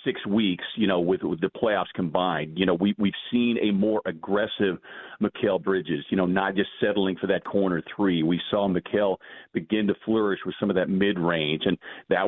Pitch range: 95-105 Hz